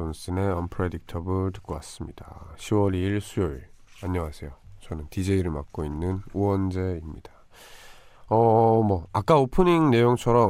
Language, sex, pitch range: Korean, male, 85-110 Hz